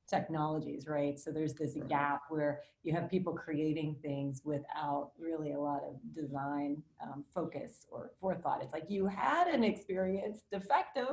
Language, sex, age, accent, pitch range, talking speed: English, female, 40-59, American, 150-180 Hz, 160 wpm